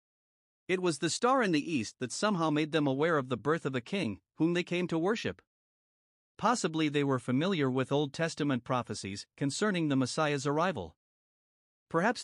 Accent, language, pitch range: American, English, 130-170 Hz